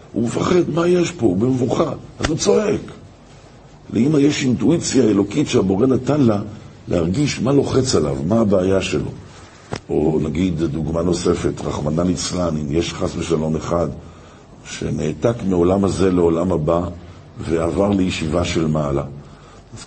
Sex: male